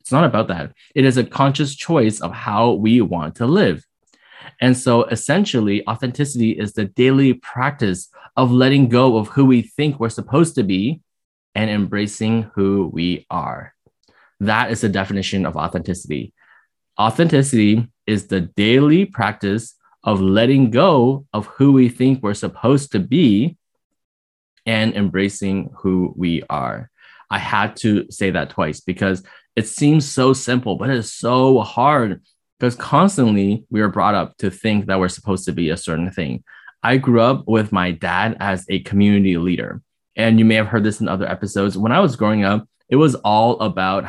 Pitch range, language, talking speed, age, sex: 95-125 Hz, English, 170 wpm, 20-39, male